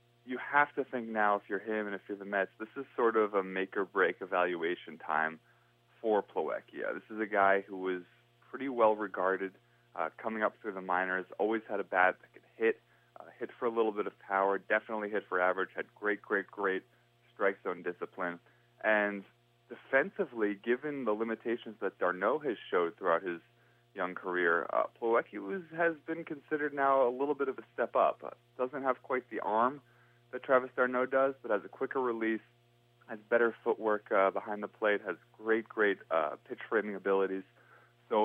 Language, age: English, 30-49